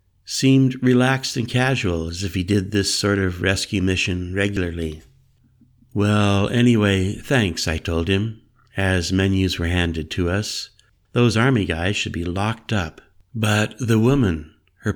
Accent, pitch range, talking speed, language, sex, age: American, 90-115 Hz, 150 wpm, English, male, 60-79